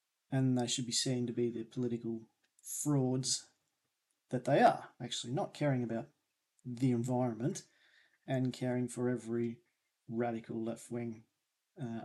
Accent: Australian